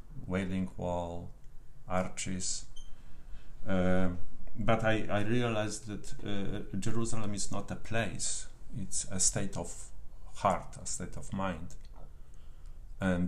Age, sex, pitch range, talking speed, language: 50-69, male, 85-100 Hz, 115 wpm, English